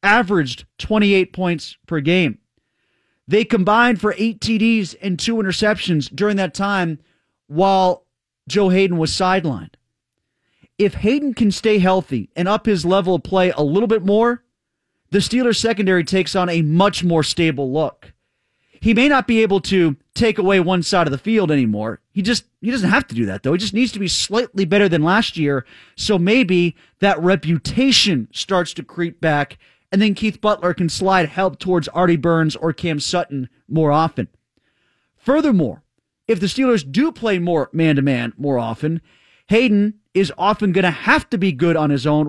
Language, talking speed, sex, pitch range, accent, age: English, 175 wpm, male, 160-210 Hz, American, 30-49